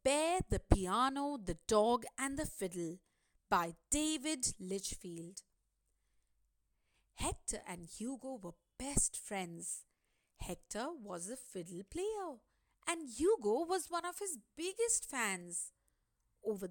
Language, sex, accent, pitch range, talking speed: English, female, Indian, 185-310 Hz, 110 wpm